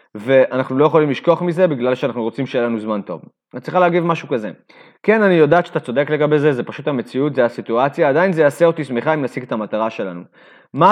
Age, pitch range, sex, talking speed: 30-49, 125-170 Hz, male, 220 wpm